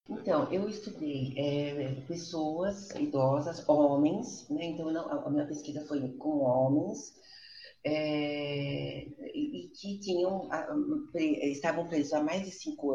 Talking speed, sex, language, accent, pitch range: 140 wpm, female, Portuguese, Brazilian, 145-200 Hz